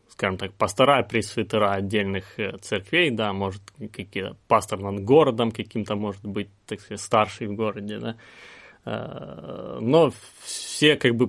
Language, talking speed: Russian, 135 wpm